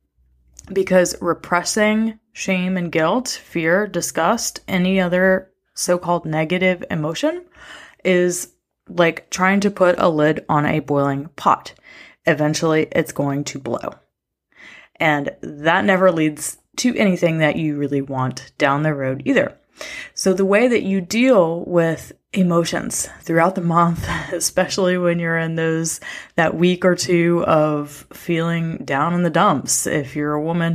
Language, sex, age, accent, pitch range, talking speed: English, female, 20-39, American, 160-190 Hz, 140 wpm